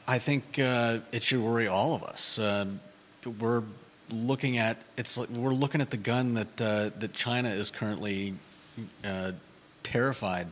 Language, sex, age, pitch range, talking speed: English, male, 40-59, 105-115 Hz, 160 wpm